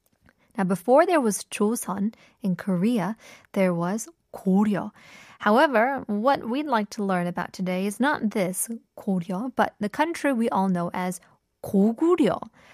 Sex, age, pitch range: female, 20-39, 190-240 Hz